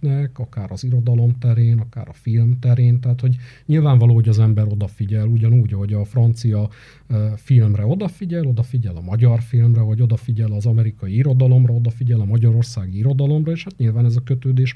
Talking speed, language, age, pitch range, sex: 165 wpm, Hungarian, 50-69, 115-140 Hz, male